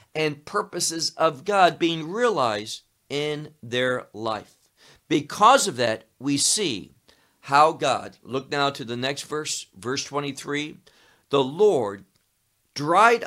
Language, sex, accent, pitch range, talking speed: English, male, American, 115-170 Hz, 120 wpm